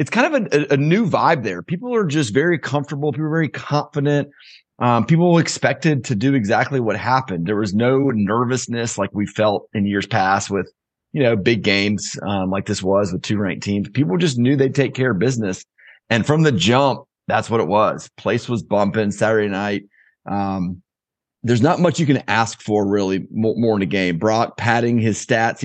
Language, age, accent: English, 30-49, American